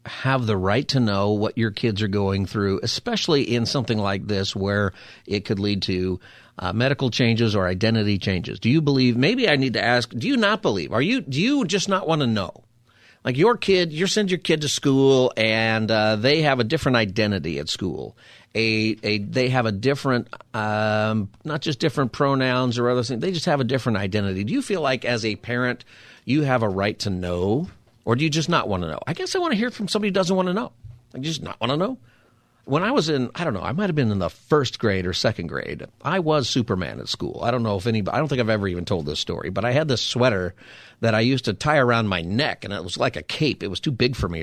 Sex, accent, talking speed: male, American, 260 wpm